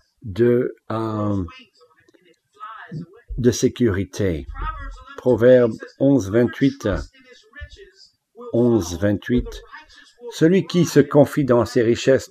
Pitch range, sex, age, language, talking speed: 105-140 Hz, male, 60-79, English, 80 wpm